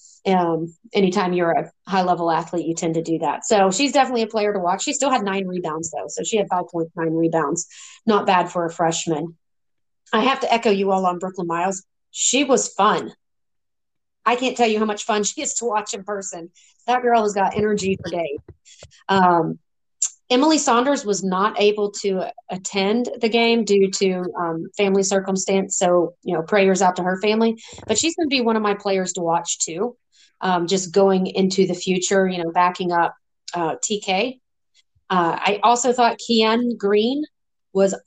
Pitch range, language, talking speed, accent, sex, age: 180-215 Hz, English, 190 wpm, American, female, 30-49